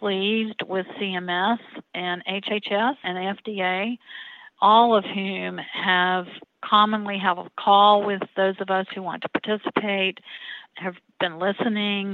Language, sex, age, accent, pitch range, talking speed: English, female, 50-69, American, 180-215 Hz, 130 wpm